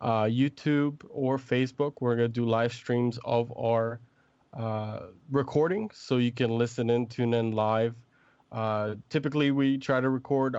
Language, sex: English, male